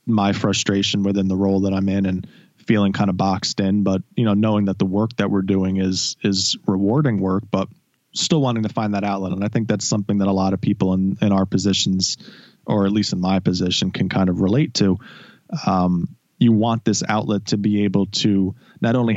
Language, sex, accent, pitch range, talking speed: English, male, American, 95-110 Hz, 220 wpm